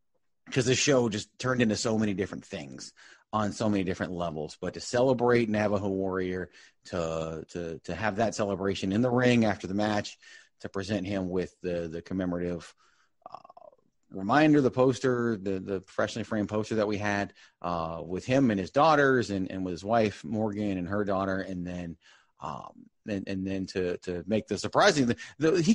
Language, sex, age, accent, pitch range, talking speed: English, male, 30-49, American, 95-125 Hz, 185 wpm